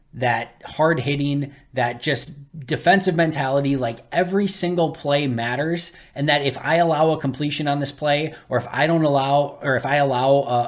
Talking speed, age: 180 wpm, 20-39